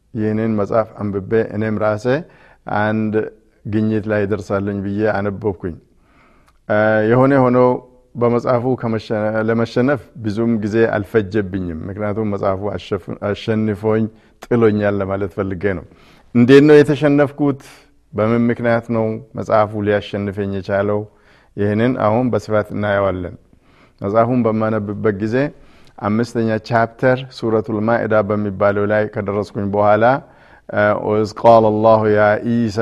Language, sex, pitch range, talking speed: Amharic, male, 105-120 Hz, 95 wpm